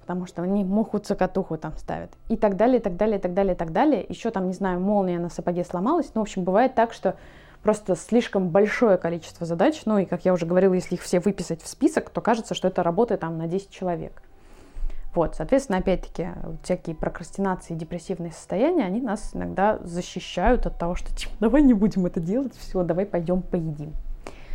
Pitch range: 170-225 Hz